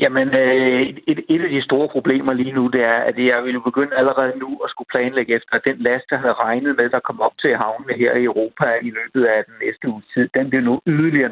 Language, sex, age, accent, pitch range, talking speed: Danish, male, 60-79, native, 120-155 Hz, 260 wpm